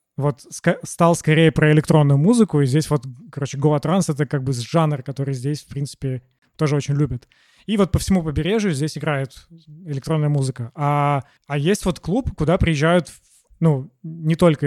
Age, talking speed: 20-39, 170 wpm